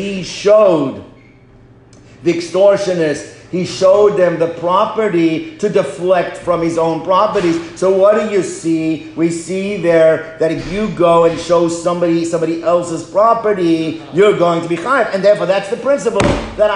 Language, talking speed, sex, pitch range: English, 160 wpm, male, 165-200 Hz